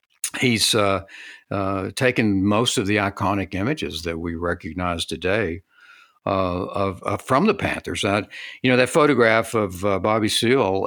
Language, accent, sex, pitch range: English, American, male, 85-100 Hz